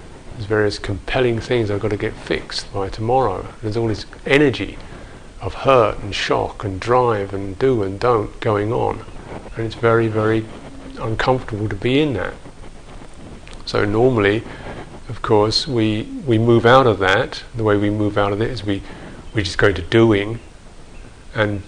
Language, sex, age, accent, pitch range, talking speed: English, male, 50-69, British, 105-125 Hz, 170 wpm